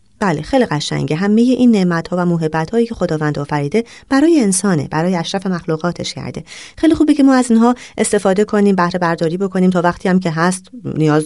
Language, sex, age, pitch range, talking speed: Persian, female, 30-49, 150-200 Hz, 190 wpm